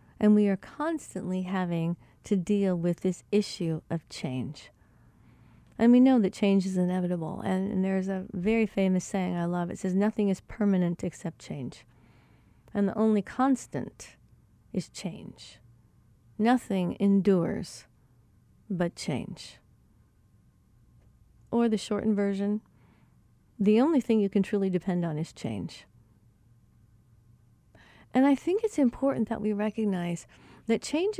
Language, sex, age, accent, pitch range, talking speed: English, female, 40-59, American, 170-210 Hz, 135 wpm